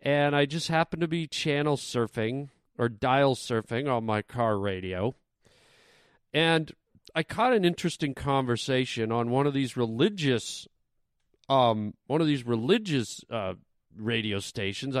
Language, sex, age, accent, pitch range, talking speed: English, male, 40-59, American, 115-145 Hz, 135 wpm